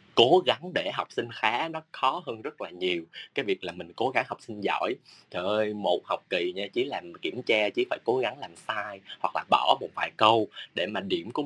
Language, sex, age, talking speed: Vietnamese, male, 20-39, 245 wpm